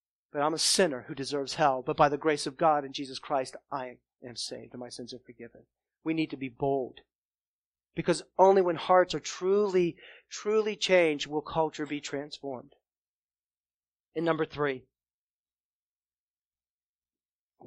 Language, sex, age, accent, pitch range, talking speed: English, male, 40-59, American, 130-185 Hz, 150 wpm